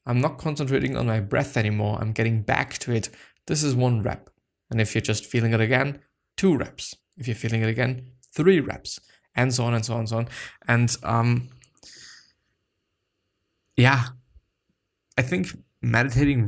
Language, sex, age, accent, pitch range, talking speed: English, male, 20-39, German, 110-130 Hz, 170 wpm